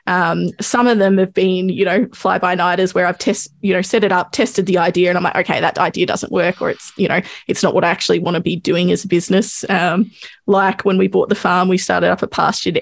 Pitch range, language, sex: 180-210 Hz, English, female